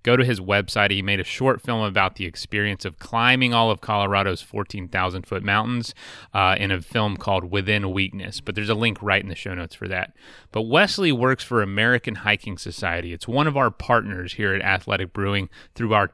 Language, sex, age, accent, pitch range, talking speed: English, male, 30-49, American, 95-130 Hz, 210 wpm